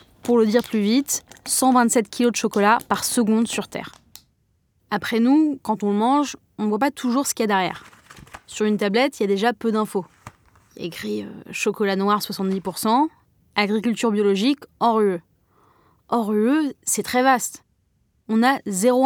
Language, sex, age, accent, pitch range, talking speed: French, female, 20-39, French, 195-250 Hz, 190 wpm